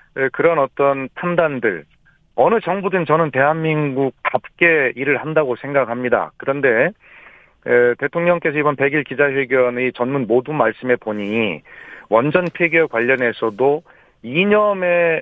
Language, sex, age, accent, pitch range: Korean, male, 40-59, native, 125-165 Hz